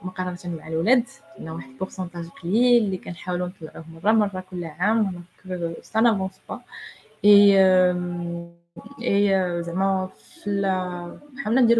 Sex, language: female, Arabic